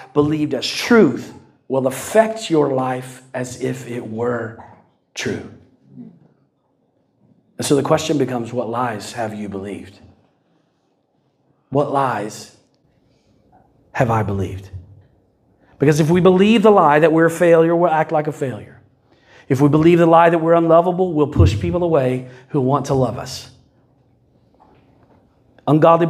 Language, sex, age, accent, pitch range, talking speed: English, male, 40-59, American, 130-160 Hz, 140 wpm